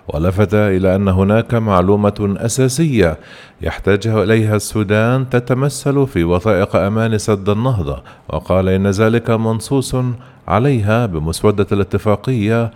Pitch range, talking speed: 95-120 Hz, 105 wpm